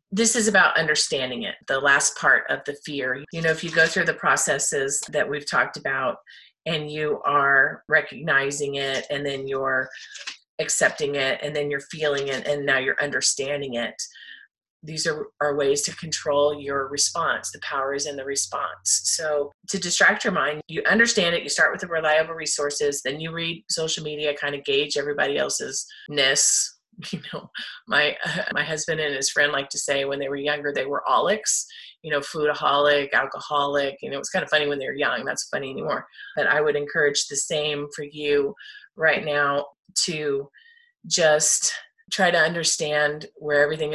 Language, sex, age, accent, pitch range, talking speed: English, female, 30-49, American, 145-175 Hz, 185 wpm